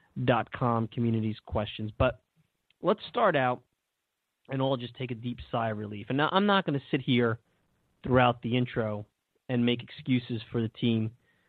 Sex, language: male, English